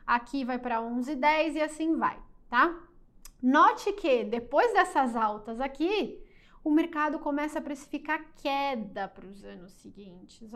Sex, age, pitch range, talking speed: female, 10-29, 230-295 Hz, 140 wpm